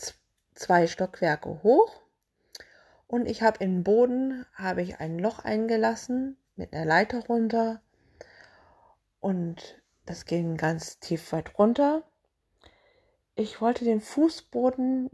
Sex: female